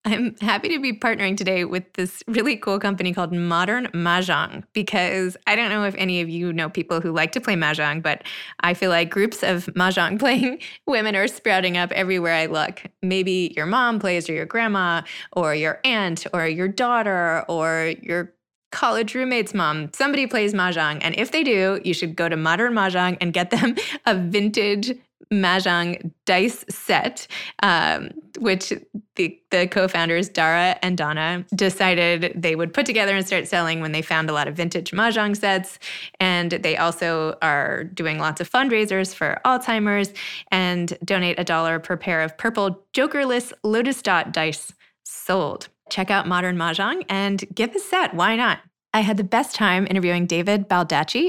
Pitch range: 170-215 Hz